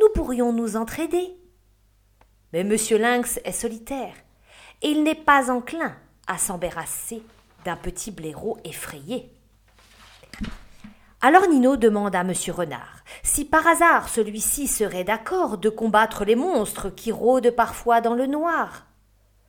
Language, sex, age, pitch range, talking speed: French, female, 40-59, 165-255 Hz, 130 wpm